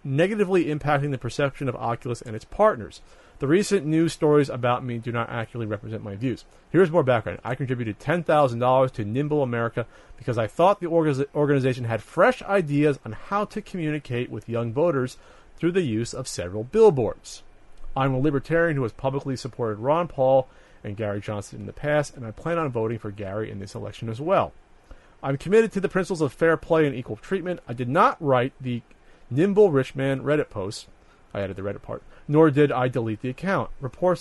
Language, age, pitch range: English, 40-59, 115-155 Hz